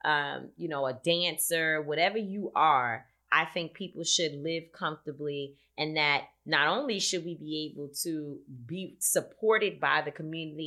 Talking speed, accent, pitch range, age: 155 wpm, American, 145-175 Hz, 30-49